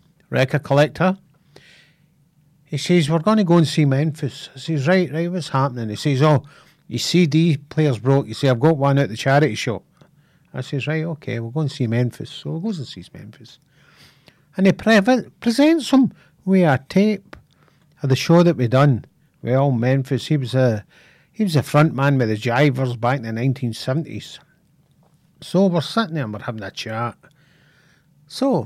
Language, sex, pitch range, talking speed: English, male, 130-160 Hz, 185 wpm